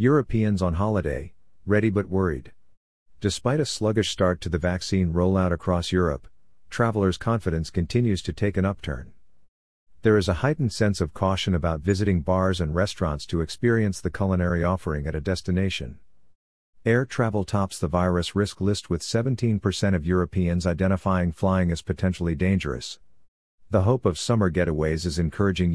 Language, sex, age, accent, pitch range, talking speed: English, male, 50-69, American, 85-100 Hz, 155 wpm